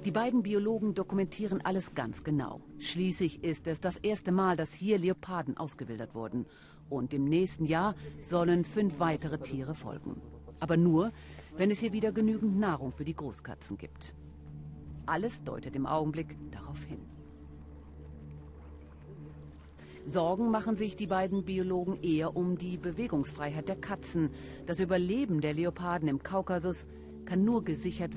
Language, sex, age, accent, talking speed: German, female, 40-59, German, 140 wpm